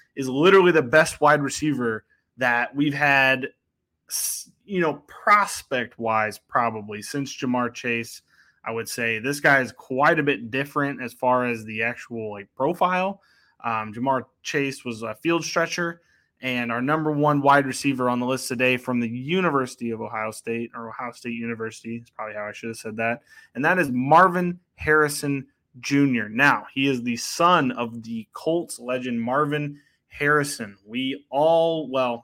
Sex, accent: male, American